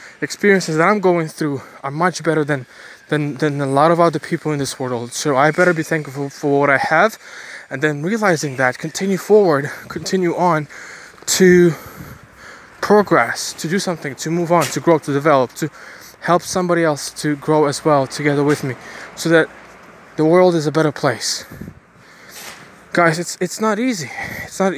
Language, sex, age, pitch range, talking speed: English, male, 20-39, 145-180 Hz, 180 wpm